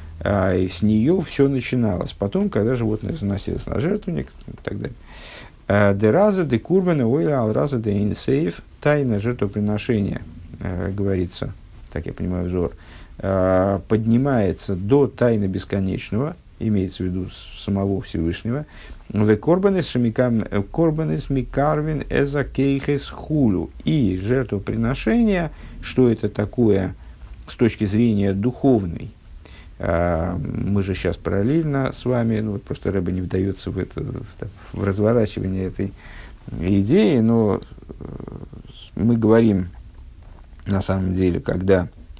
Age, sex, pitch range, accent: 50-69, male, 95-115 Hz, native